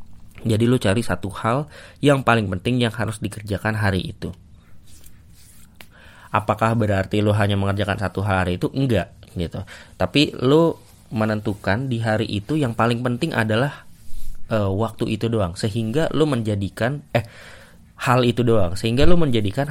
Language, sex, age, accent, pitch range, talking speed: Indonesian, male, 20-39, native, 95-115 Hz, 145 wpm